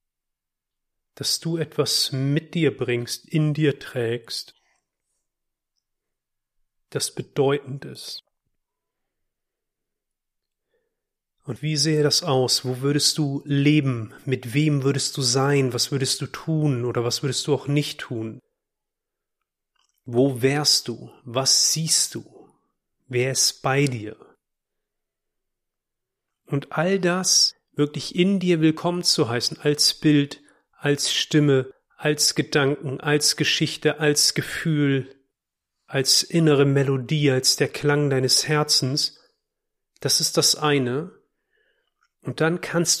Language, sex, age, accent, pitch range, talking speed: German, male, 40-59, German, 135-170 Hz, 115 wpm